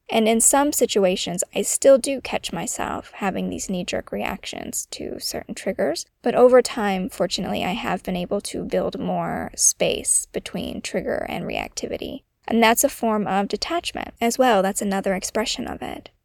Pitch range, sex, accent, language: 190-235 Hz, female, American, English